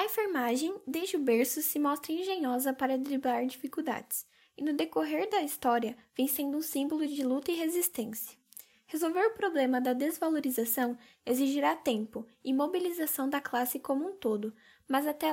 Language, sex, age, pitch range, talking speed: Portuguese, female, 10-29, 250-305 Hz, 155 wpm